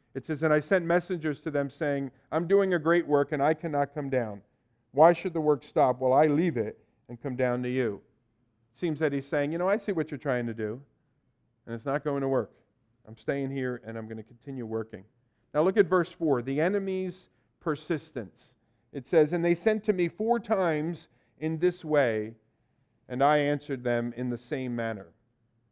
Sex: male